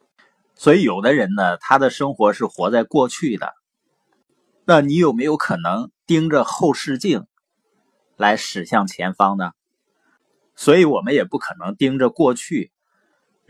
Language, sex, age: Chinese, male, 30-49